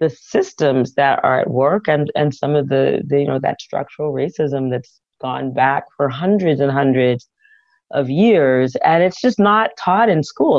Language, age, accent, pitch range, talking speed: English, 40-59, American, 135-165 Hz, 185 wpm